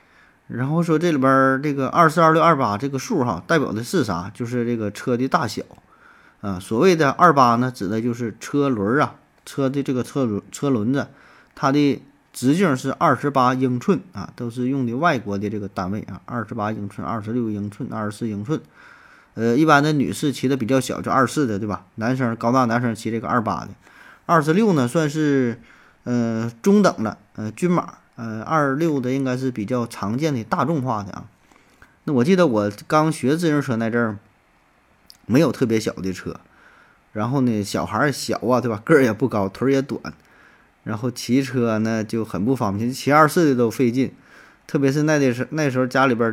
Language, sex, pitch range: Chinese, male, 115-145 Hz